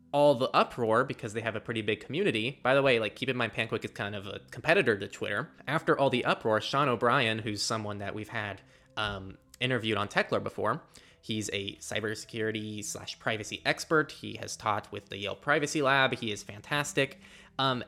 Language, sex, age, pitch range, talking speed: English, male, 20-39, 105-125 Hz, 200 wpm